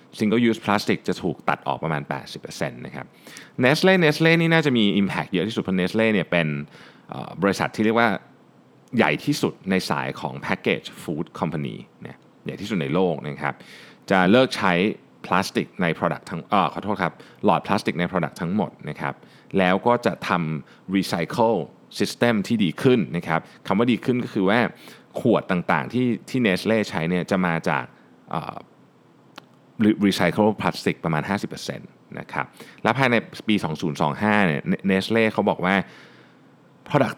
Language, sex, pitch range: Thai, male, 90-120 Hz